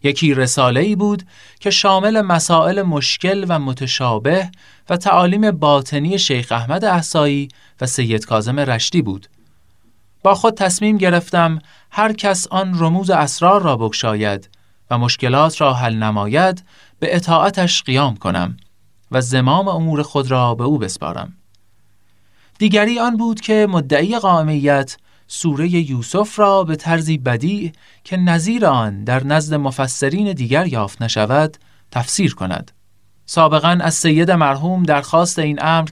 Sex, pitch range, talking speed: male, 120-185 Hz, 130 wpm